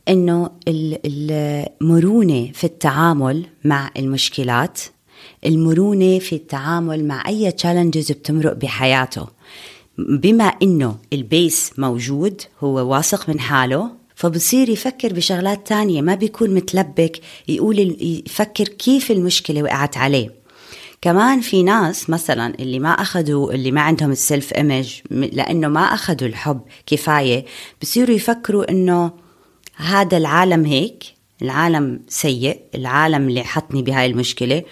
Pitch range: 135-180 Hz